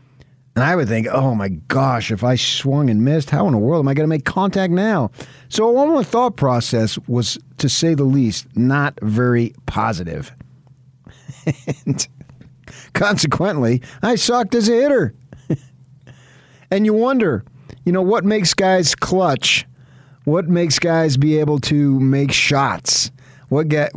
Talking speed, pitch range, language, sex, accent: 155 wpm, 110-145 Hz, English, male, American